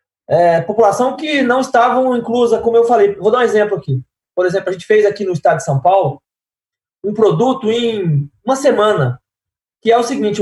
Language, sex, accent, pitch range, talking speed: Portuguese, male, Brazilian, 160-225 Hz, 195 wpm